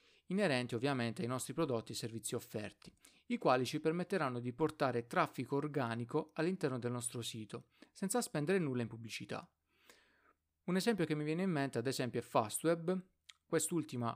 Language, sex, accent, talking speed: Italian, male, native, 155 wpm